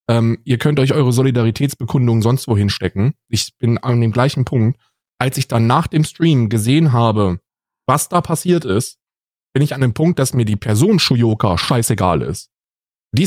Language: German